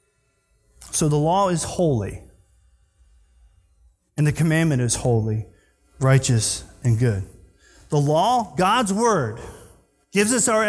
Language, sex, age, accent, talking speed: English, male, 40-59, American, 110 wpm